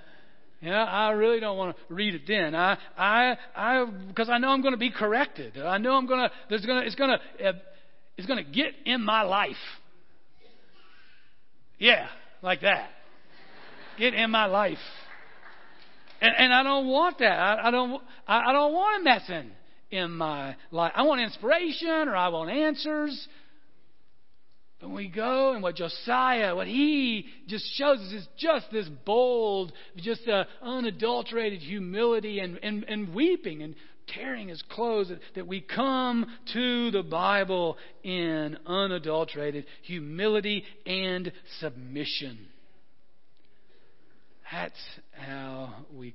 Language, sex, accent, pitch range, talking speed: English, male, American, 180-250 Hz, 145 wpm